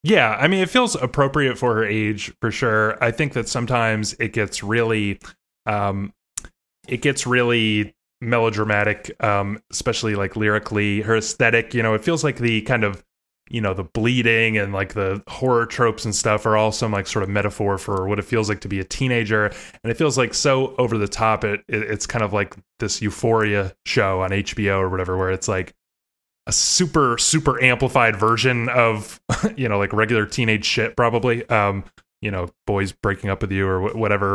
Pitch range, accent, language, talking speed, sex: 105-125 Hz, American, English, 195 wpm, male